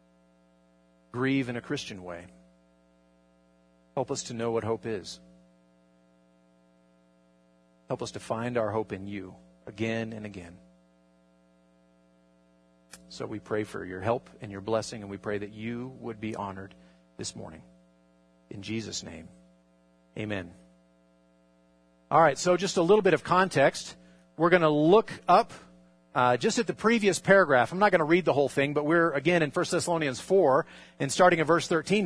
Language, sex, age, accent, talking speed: English, male, 40-59, American, 160 wpm